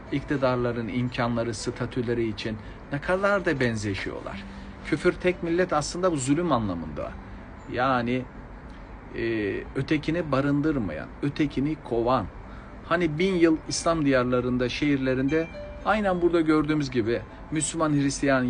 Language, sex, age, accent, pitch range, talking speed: Turkish, male, 50-69, native, 115-145 Hz, 105 wpm